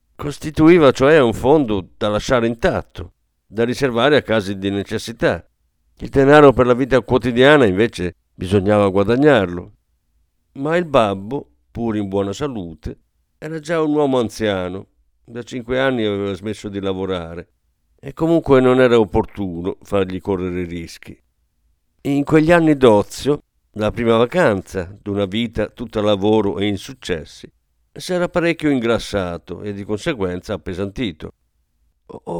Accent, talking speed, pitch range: native, 135 wpm, 100-140 Hz